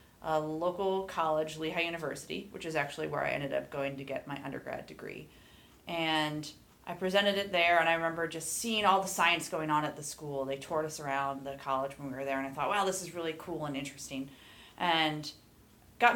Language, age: English, 30-49